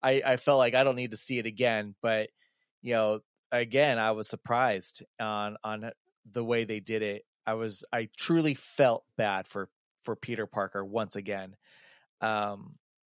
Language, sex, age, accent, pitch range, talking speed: English, male, 20-39, American, 110-150 Hz, 175 wpm